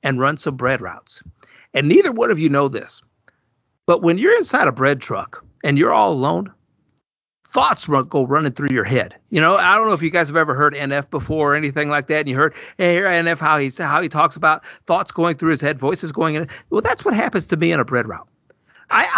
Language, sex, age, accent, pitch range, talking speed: English, male, 50-69, American, 140-170 Hz, 245 wpm